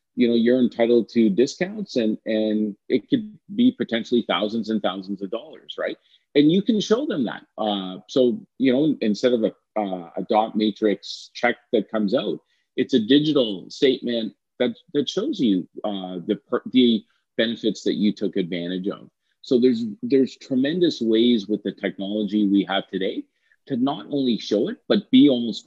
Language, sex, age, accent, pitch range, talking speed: English, male, 40-59, American, 105-125 Hz, 175 wpm